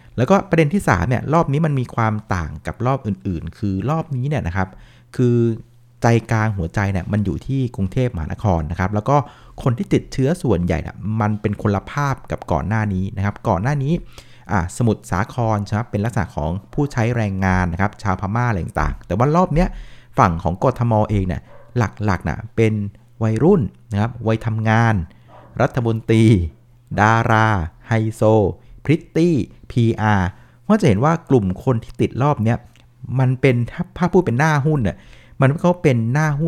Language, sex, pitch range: Thai, male, 100-130 Hz